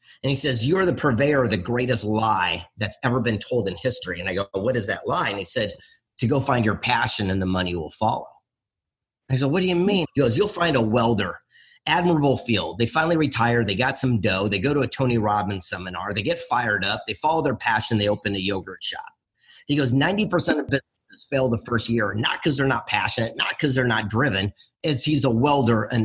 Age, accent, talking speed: 40-59, American, 235 wpm